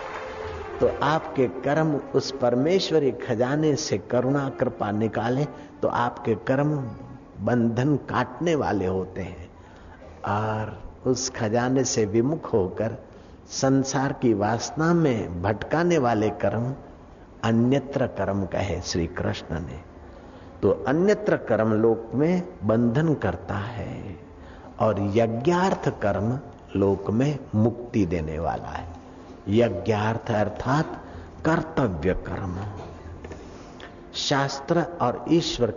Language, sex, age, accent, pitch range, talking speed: Hindi, male, 60-79, native, 100-140 Hz, 100 wpm